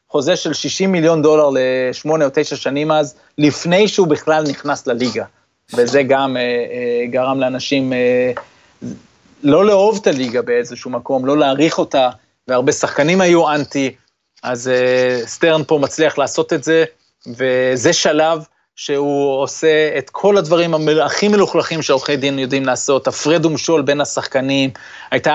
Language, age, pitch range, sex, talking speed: Hebrew, 30-49, 135-160 Hz, male, 145 wpm